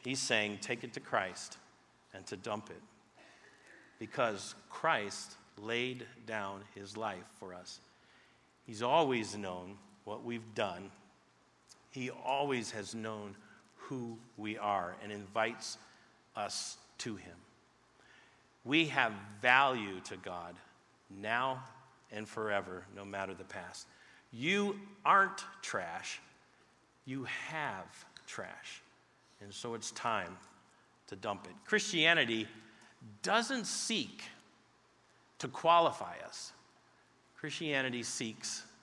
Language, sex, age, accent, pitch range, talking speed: English, male, 50-69, American, 110-140 Hz, 105 wpm